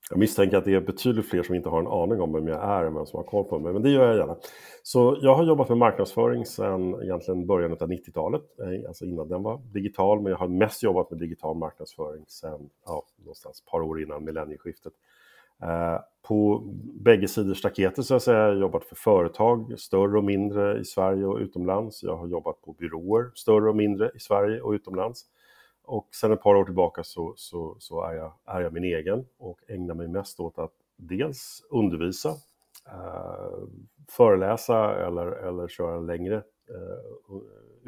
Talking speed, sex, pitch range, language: 185 wpm, male, 90-110 Hz, Swedish